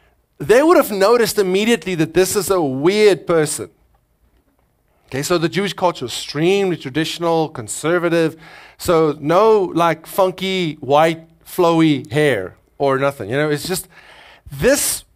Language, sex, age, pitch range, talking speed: English, male, 30-49, 140-195 Hz, 135 wpm